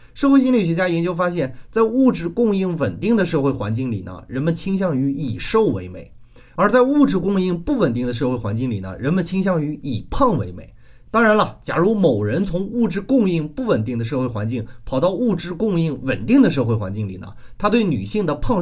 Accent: native